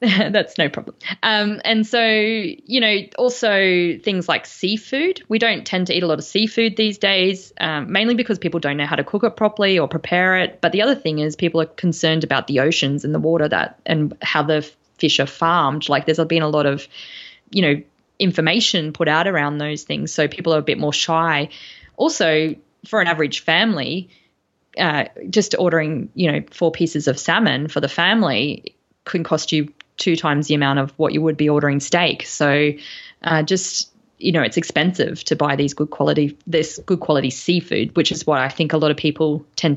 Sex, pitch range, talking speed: female, 150-190 Hz, 205 wpm